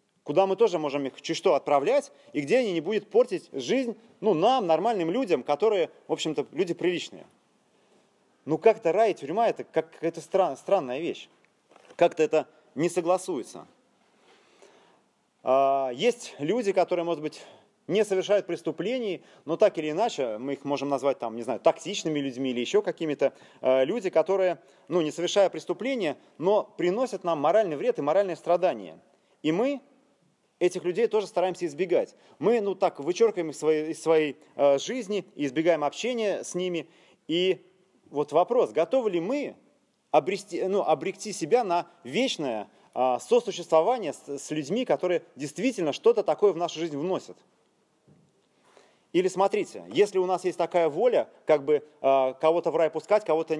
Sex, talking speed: male, 155 wpm